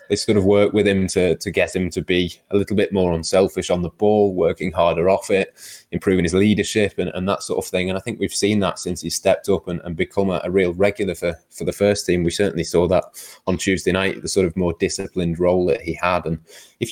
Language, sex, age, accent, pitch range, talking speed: English, male, 20-39, British, 85-100 Hz, 260 wpm